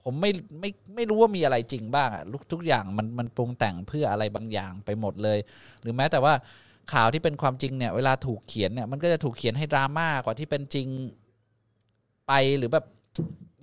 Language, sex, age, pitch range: Thai, male, 20-39, 110-150 Hz